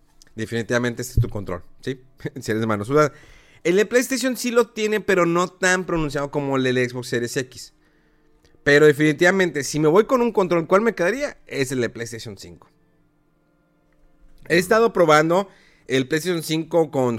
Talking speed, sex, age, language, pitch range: 180 wpm, male, 40-59, Spanish, 120-155 Hz